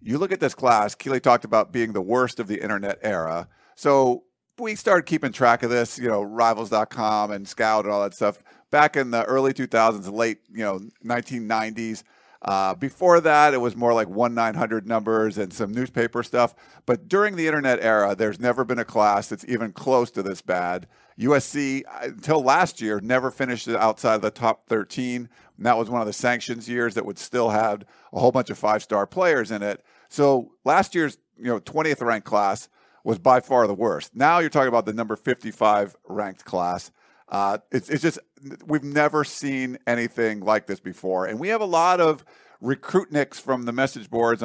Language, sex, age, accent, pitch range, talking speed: English, male, 50-69, American, 110-135 Hz, 190 wpm